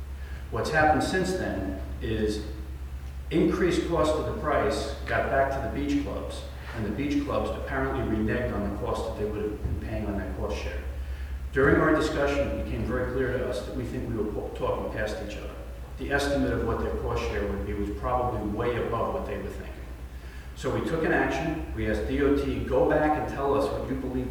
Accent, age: American, 40-59